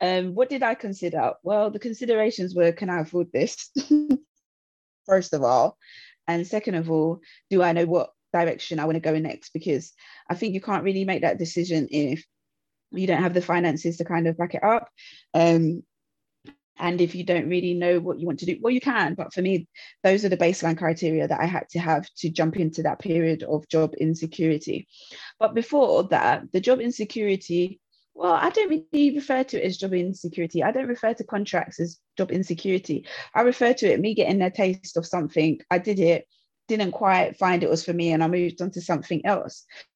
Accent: British